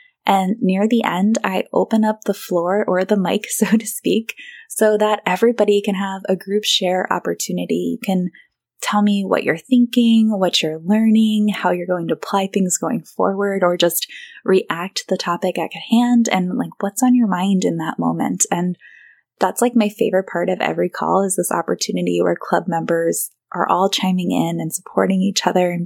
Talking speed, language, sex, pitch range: 195 wpm, English, female, 180-220 Hz